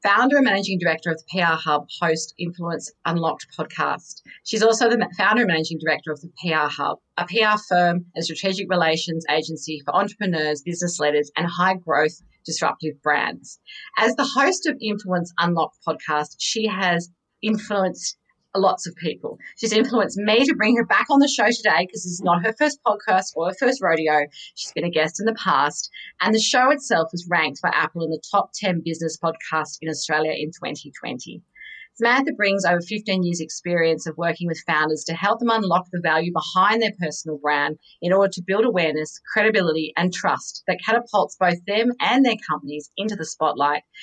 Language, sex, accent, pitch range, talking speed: English, female, Australian, 160-215 Hz, 185 wpm